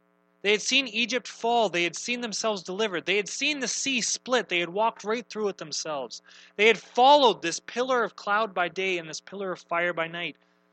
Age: 30-49